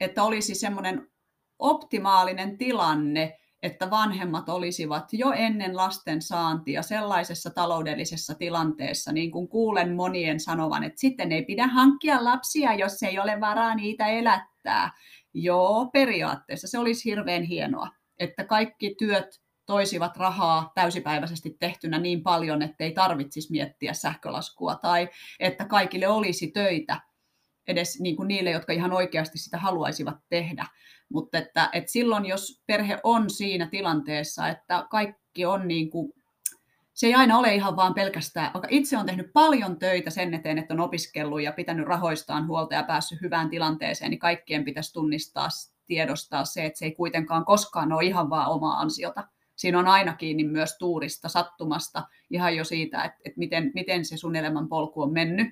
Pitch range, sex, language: 160-200 Hz, female, Finnish